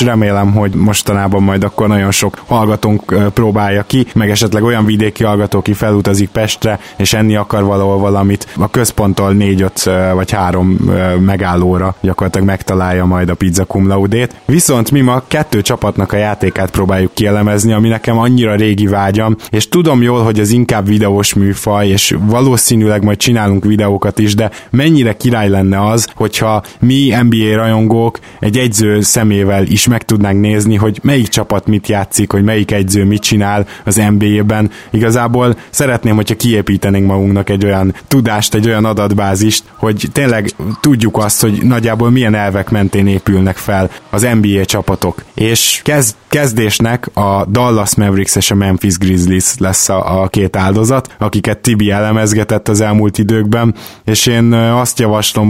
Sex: male